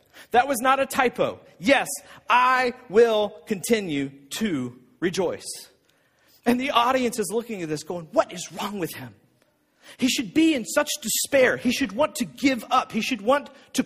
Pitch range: 225-285 Hz